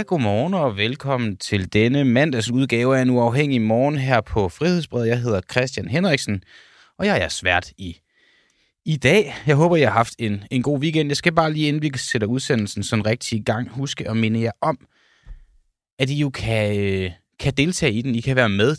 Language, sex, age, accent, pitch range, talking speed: Danish, male, 20-39, native, 105-130 Hz, 200 wpm